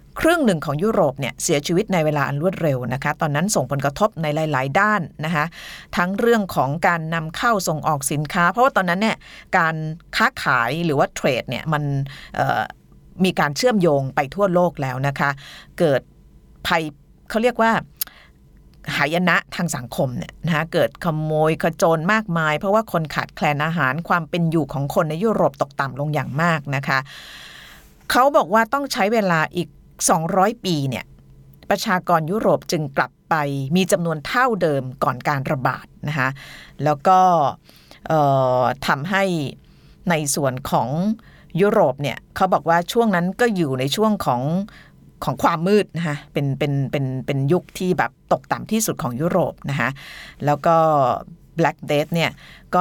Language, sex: Thai, female